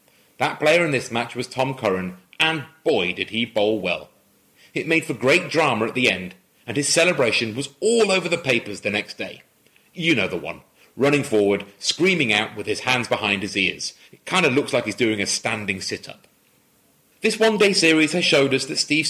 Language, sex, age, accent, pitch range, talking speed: English, male, 30-49, British, 110-160 Hz, 205 wpm